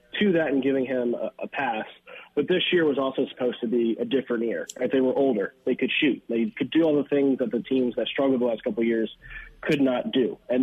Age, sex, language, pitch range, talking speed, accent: 20-39, male, English, 115-135 Hz, 255 wpm, American